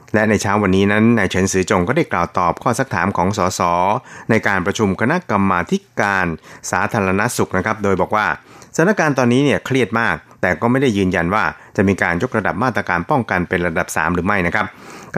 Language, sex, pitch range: Thai, male, 95-120 Hz